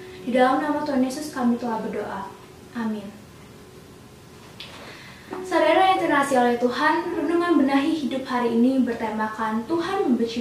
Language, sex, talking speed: Indonesian, female, 125 wpm